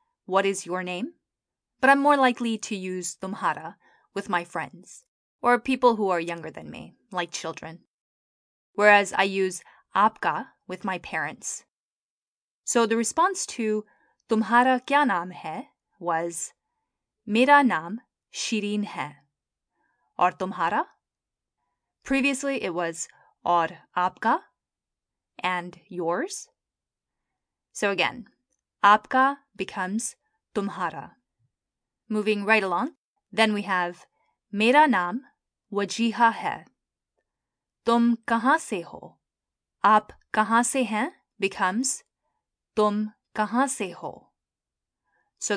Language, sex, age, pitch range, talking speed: English, female, 10-29, 185-255 Hz, 105 wpm